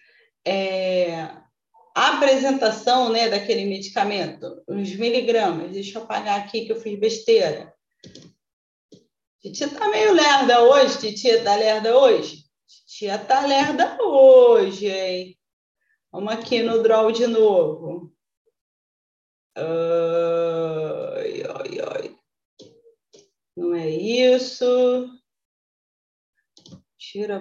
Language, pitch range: Portuguese, 200-270 Hz